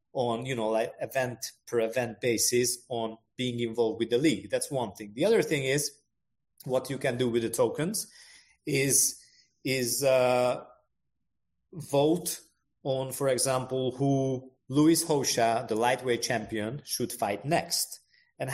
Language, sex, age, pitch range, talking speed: English, male, 30-49, 120-150 Hz, 145 wpm